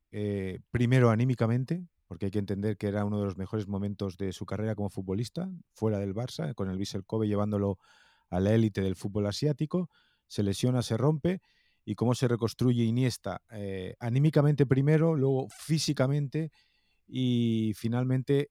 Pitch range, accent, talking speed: 95-120 Hz, Spanish, 160 wpm